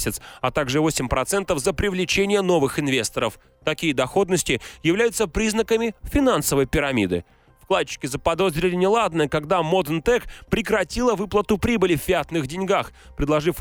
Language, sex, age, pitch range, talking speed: Russian, male, 30-49, 150-195 Hz, 115 wpm